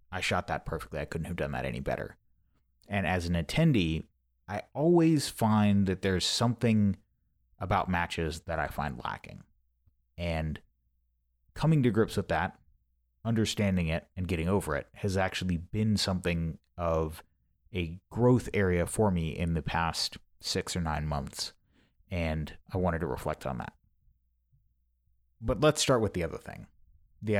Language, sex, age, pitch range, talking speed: English, male, 30-49, 80-100 Hz, 155 wpm